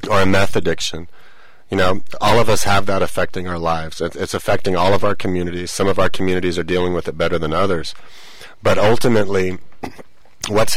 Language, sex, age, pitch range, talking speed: English, male, 40-59, 90-105 Hz, 195 wpm